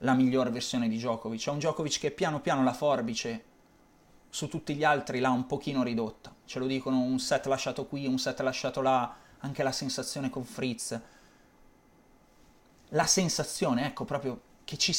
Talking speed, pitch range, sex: 175 wpm, 115-135 Hz, male